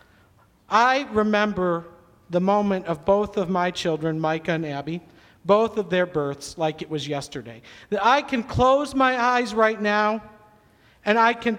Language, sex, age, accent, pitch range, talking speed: English, male, 50-69, American, 210-265 Hz, 160 wpm